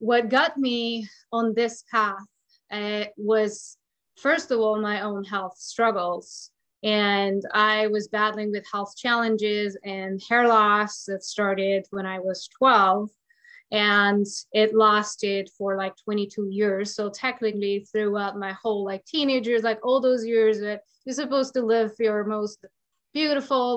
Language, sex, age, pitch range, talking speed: English, female, 20-39, 200-230 Hz, 145 wpm